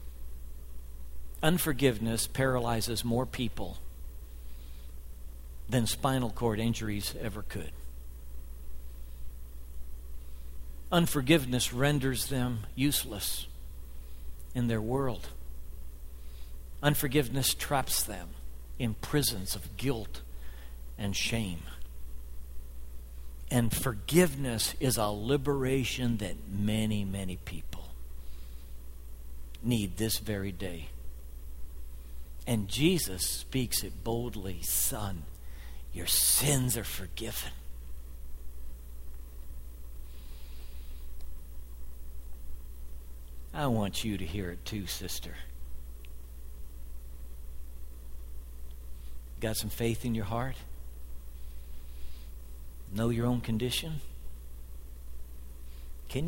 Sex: male